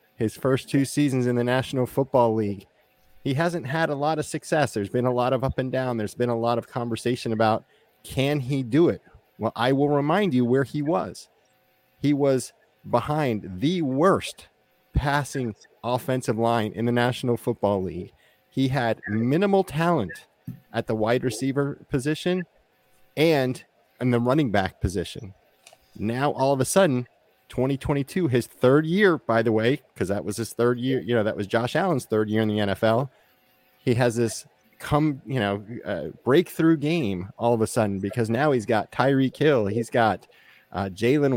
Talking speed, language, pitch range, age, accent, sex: 180 wpm, English, 110-140 Hz, 30-49, American, male